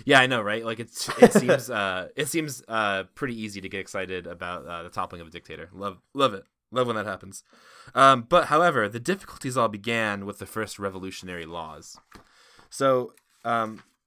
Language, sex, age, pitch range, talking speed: English, male, 20-39, 95-120 Hz, 190 wpm